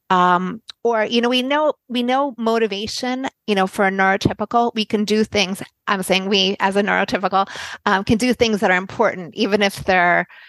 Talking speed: 195 wpm